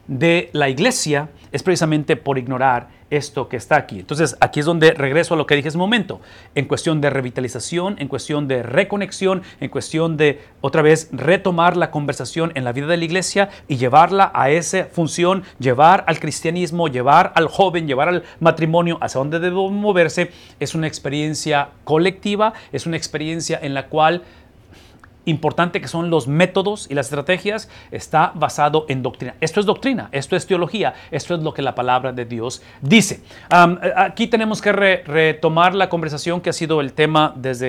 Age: 40-59